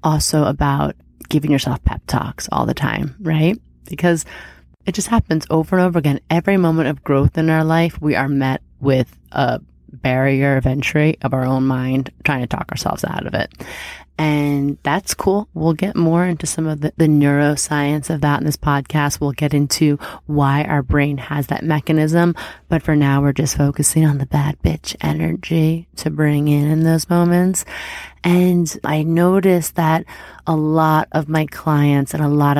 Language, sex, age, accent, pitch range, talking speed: English, female, 30-49, American, 140-160 Hz, 180 wpm